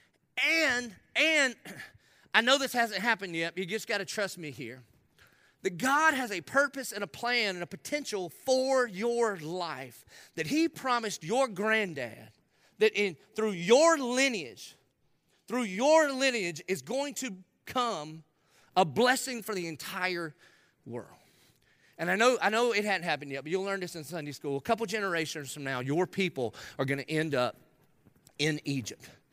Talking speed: 170 wpm